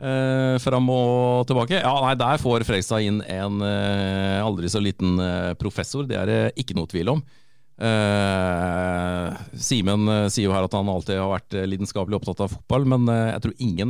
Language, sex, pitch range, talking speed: English, male, 100-125 Hz, 195 wpm